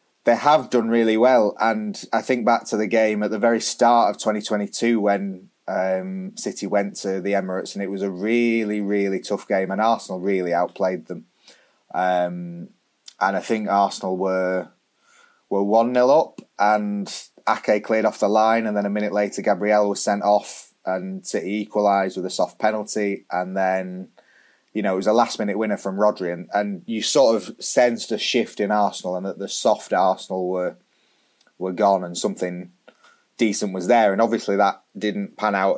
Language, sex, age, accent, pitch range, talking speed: English, male, 20-39, British, 95-110 Hz, 185 wpm